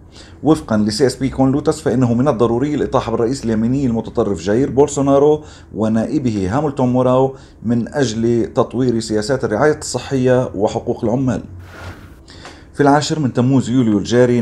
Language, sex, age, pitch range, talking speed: Arabic, male, 30-49, 105-125 Hz, 130 wpm